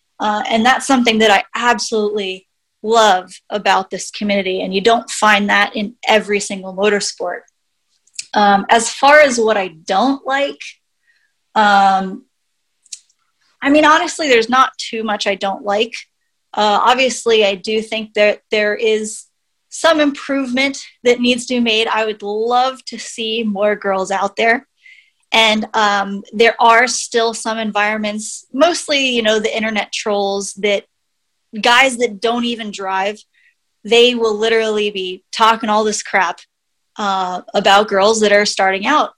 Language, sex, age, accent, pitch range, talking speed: English, female, 30-49, American, 200-240 Hz, 145 wpm